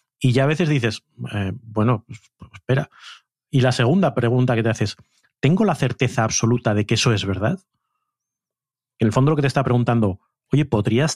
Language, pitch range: Spanish, 115-145 Hz